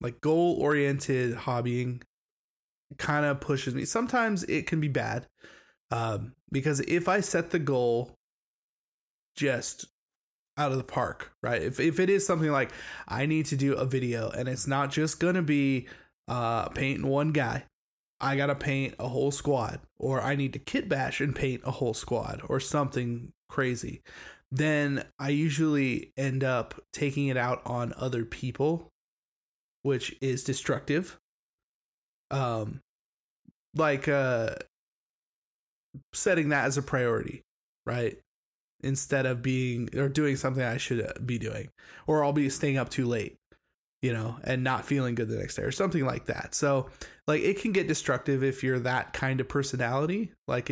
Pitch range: 125-145 Hz